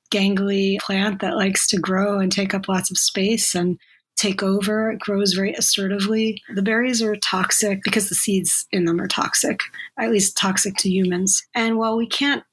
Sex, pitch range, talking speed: female, 195-225 Hz, 185 wpm